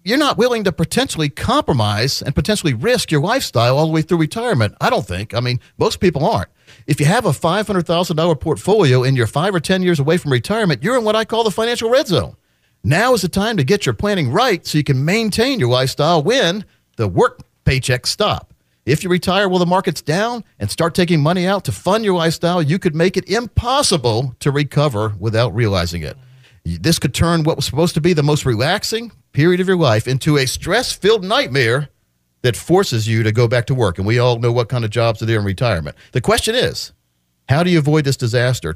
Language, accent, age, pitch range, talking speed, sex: English, American, 50-69, 120-180 Hz, 220 wpm, male